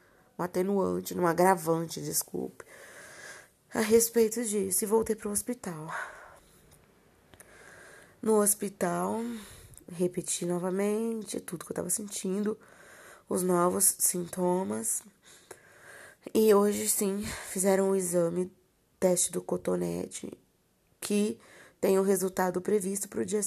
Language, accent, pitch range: Portuguese, Brazilian, 170-205 Hz